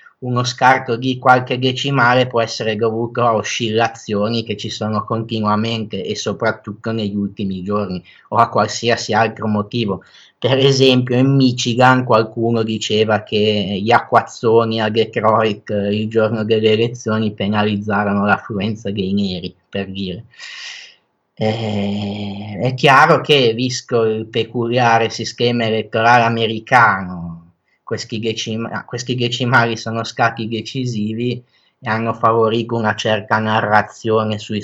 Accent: native